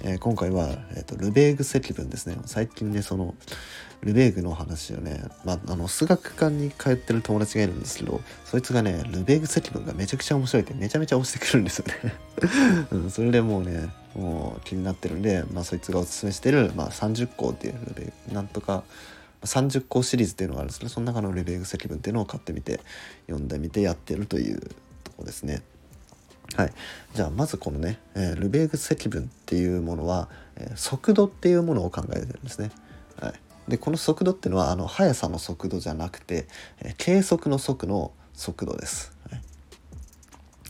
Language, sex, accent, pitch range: Japanese, male, native, 85-120 Hz